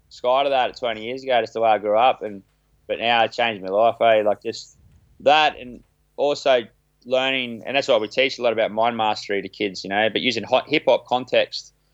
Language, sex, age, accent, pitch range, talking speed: English, male, 20-39, Australian, 100-115 Hz, 225 wpm